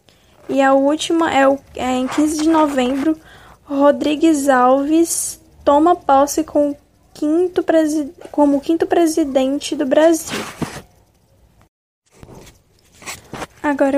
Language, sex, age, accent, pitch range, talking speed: Portuguese, female, 10-29, Brazilian, 270-310 Hz, 105 wpm